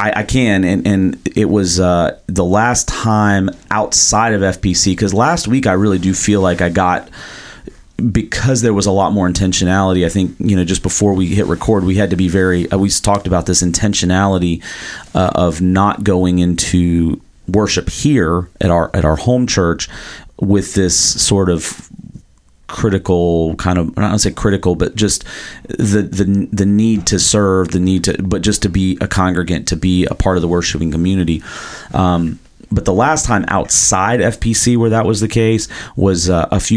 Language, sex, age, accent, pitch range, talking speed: English, male, 30-49, American, 85-100 Hz, 185 wpm